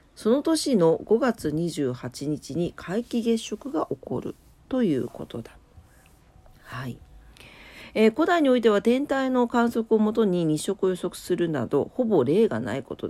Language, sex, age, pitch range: Japanese, female, 40-59, 170-240 Hz